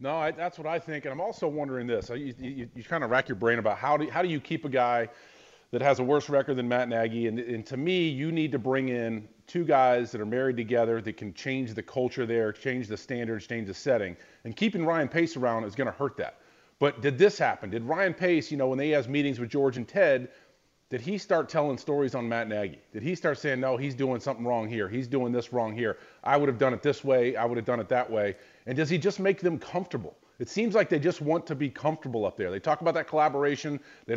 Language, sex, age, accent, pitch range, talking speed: English, male, 40-59, American, 125-170 Hz, 265 wpm